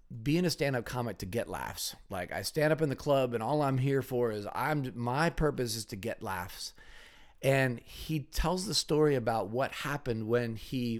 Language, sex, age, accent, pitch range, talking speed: English, male, 40-59, American, 105-135 Hz, 200 wpm